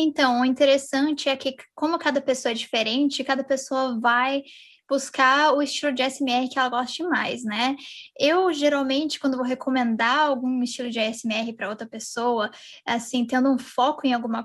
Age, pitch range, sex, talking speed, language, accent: 10-29, 250-300 Hz, female, 170 wpm, Portuguese, Brazilian